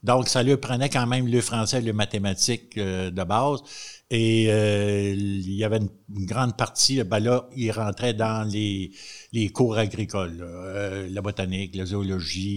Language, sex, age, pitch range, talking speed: French, male, 60-79, 105-125 Hz, 170 wpm